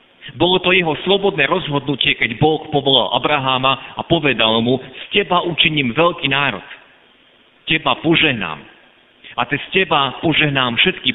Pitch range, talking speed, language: 125-170 Hz, 135 wpm, Slovak